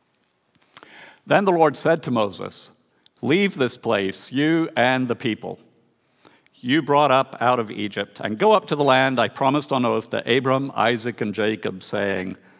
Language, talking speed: English, 165 wpm